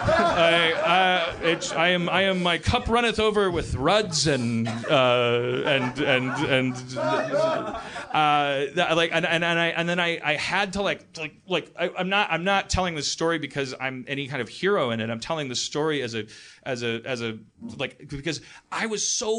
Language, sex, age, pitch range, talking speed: English, male, 30-49, 130-190 Hz, 195 wpm